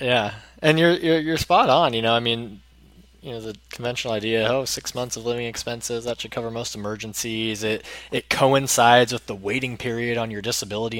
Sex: male